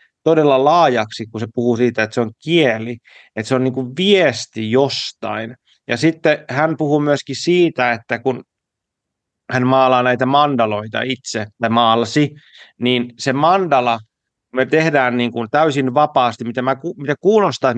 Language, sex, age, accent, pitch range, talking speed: Finnish, male, 30-49, native, 115-140 Hz, 150 wpm